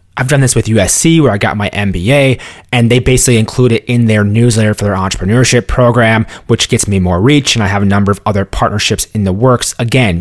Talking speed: 230 wpm